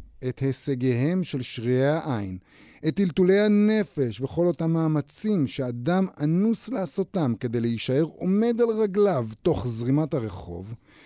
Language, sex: Hebrew, male